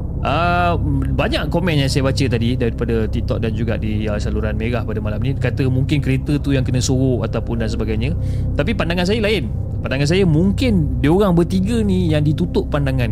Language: Malay